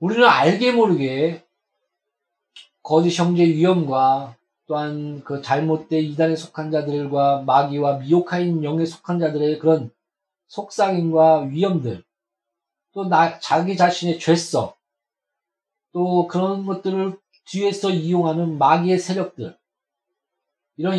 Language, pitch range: Korean, 145-185 Hz